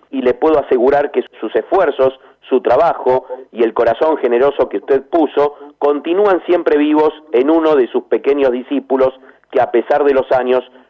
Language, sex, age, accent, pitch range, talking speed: Spanish, male, 40-59, Argentinian, 125-190 Hz, 170 wpm